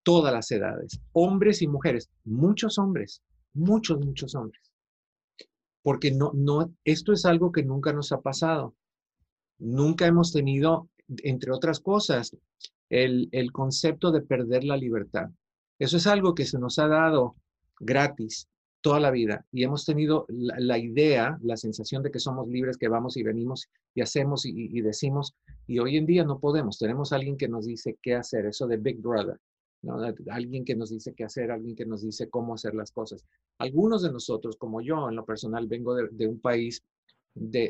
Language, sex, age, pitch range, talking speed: Spanish, male, 50-69, 115-150 Hz, 180 wpm